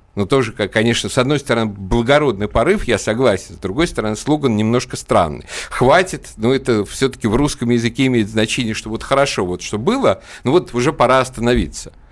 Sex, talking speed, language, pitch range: male, 180 wpm, Russian, 95-120 Hz